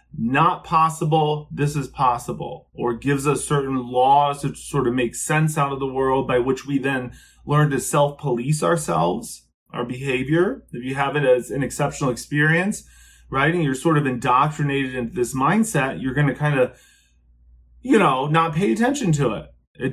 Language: English